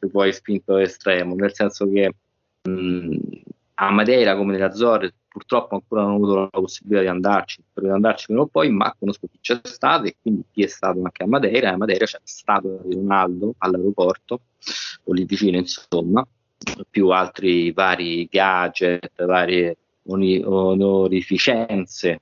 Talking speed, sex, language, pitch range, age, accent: 150 wpm, male, Italian, 85-95 Hz, 20-39, native